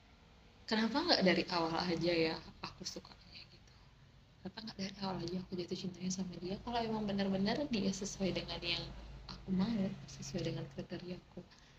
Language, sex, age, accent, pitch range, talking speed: Indonesian, female, 20-39, native, 170-205 Hz, 165 wpm